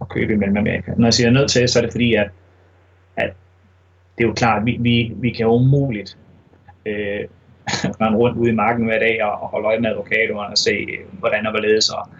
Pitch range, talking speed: 100-125 Hz, 230 wpm